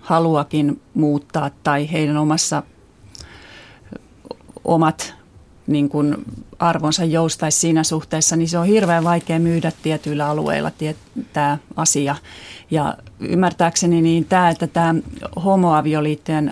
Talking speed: 90 wpm